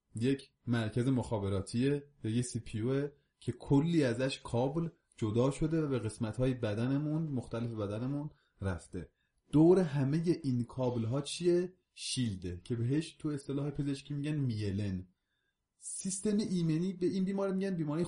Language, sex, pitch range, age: Persian, male, 110-145 Hz, 30-49